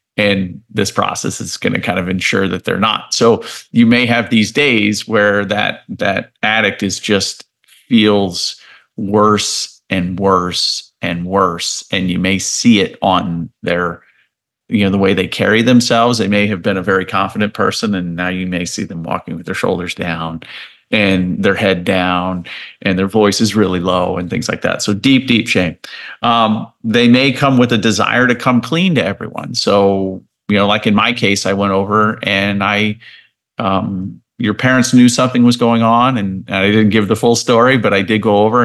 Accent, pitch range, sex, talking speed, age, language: American, 95-115 Hz, male, 195 wpm, 40-59, English